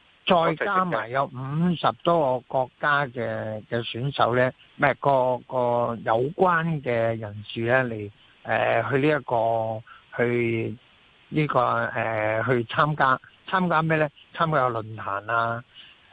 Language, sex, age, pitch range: Chinese, male, 60-79, 115-155 Hz